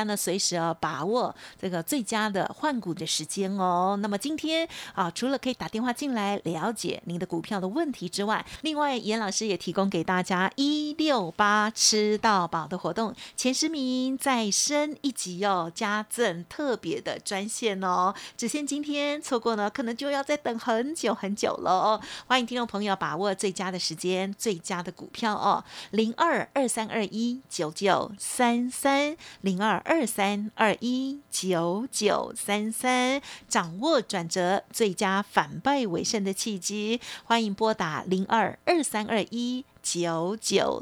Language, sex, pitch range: Chinese, female, 195-260 Hz